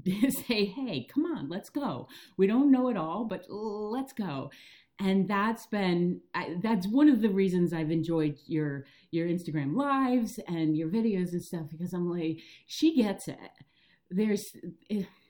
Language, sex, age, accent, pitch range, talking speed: English, female, 40-59, American, 165-210 Hz, 155 wpm